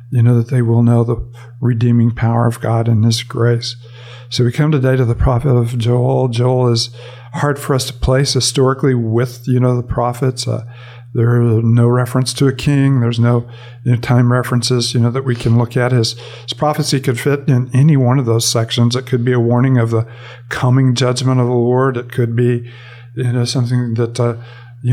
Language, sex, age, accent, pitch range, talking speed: English, male, 50-69, American, 120-130 Hz, 215 wpm